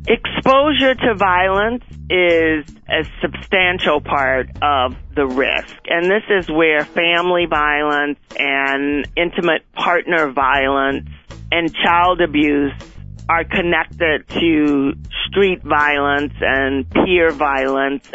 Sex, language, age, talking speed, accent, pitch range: male, English, 40-59, 105 wpm, American, 145-185 Hz